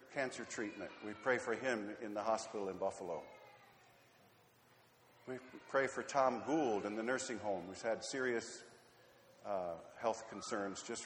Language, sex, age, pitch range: English, male, 50-69, 110-150 Hz